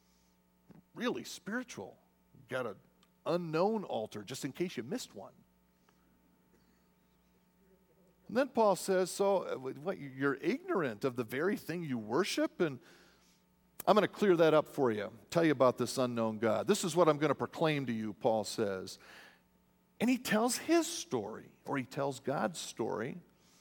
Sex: male